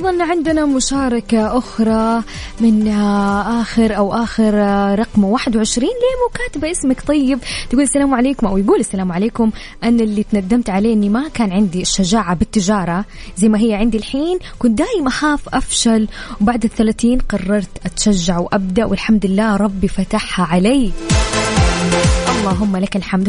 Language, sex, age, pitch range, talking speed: English, female, 20-39, 200-255 Hz, 135 wpm